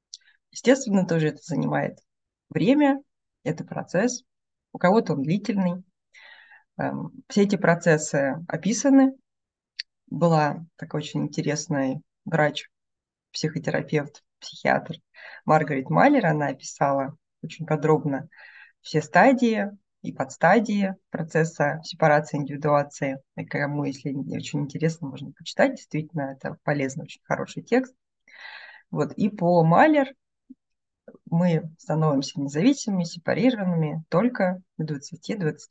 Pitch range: 145-200 Hz